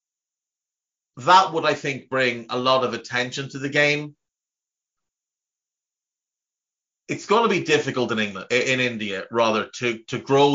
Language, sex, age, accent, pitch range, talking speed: English, male, 30-49, Irish, 115-140 Hz, 140 wpm